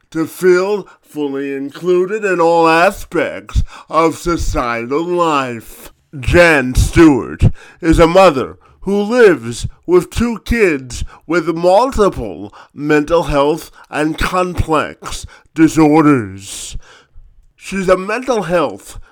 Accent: American